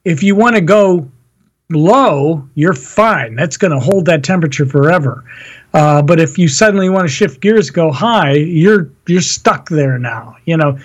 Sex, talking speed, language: male, 185 wpm, English